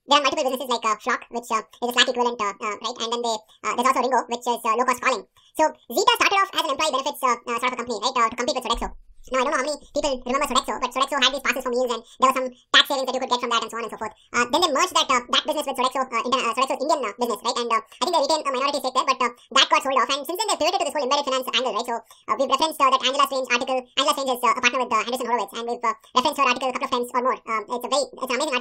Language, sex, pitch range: English, male, 240-280 Hz